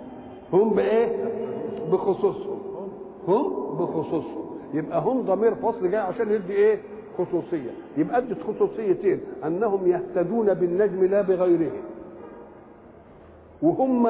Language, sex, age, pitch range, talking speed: English, male, 50-69, 180-250 Hz, 100 wpm